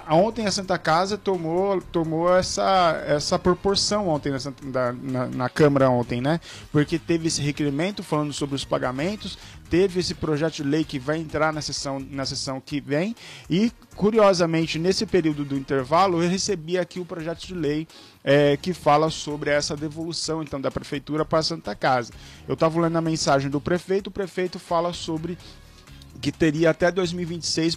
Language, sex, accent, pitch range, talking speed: Portuguese, male, Brazilian, 145-180 Hz, 175 wpm